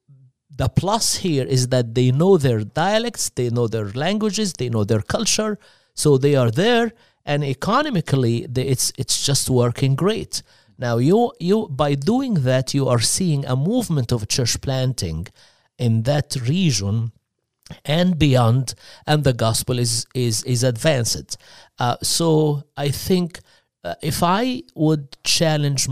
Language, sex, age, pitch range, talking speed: English, male, 50-69, 120-170 Hz, 150 wpm